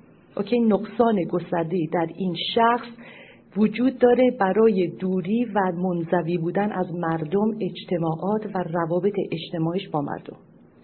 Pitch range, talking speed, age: 180-230 Hz, 110 wpm, 40-59